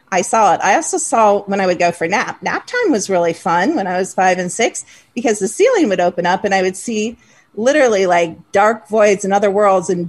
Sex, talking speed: female, 245 wpm